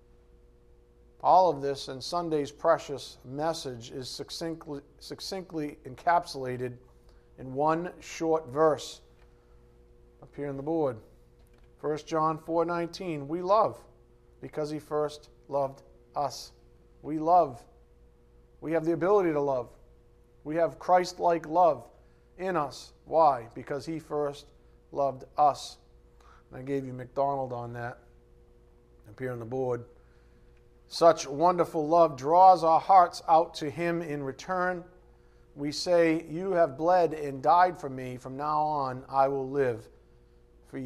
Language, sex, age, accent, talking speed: English, male, 40-59, American, 130 wpm